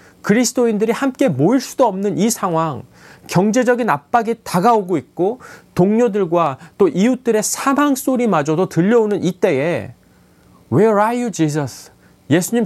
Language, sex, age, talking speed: English, male, 40-59, 115 wpm